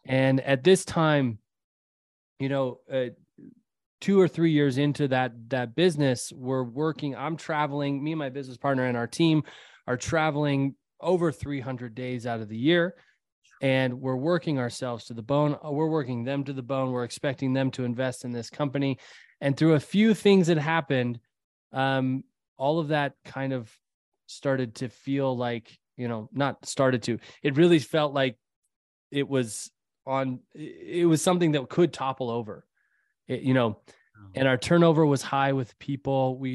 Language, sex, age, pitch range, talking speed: English, male, 20-39, 125-150 Hz, 170 wpm